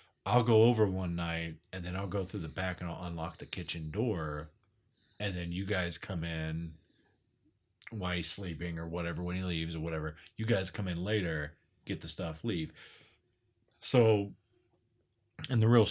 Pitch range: 85-115 Hz